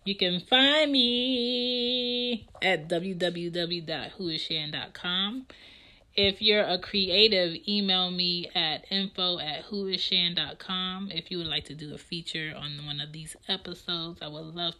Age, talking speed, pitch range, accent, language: 30-49, 130 wpm, 155-195 Hz, American, English